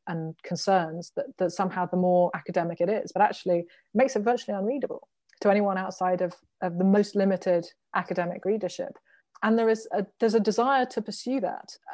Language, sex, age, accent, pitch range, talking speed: English, female, 30-49, British, 180-230 Hz, 180 wpm